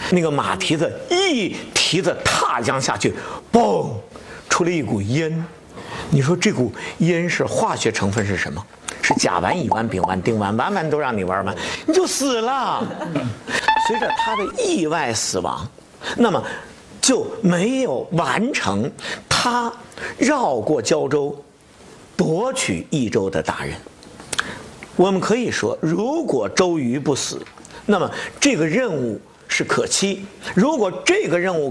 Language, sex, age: Chinese, male, 50-69